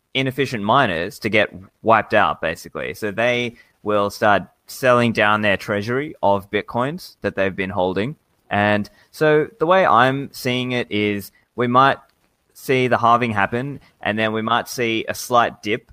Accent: Australian